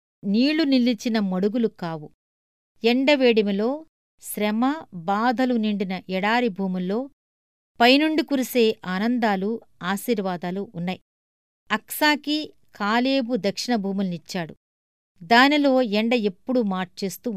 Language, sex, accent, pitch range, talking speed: Telugu, female, native, 190-245 Hz, 80 wpm